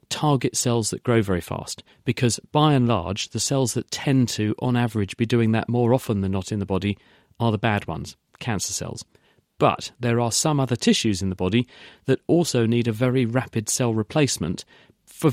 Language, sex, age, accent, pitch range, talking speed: English, male, 40-59, British, 110-130 Hz, 200 wpm